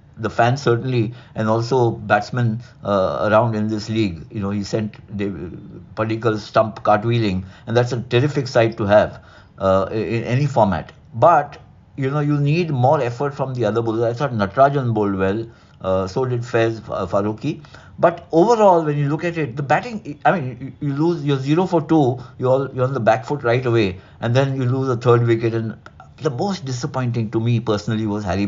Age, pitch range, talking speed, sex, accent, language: 60-79, 110-140 Hz, 195 wpm, male, Indian, English